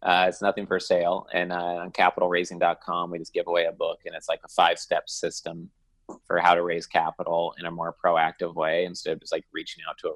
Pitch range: 85-95 Hz